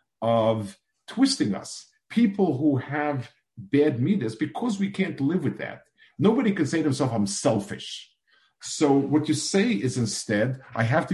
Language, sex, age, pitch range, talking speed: English, male, 50-69, 115-170 Hz, 160 wpm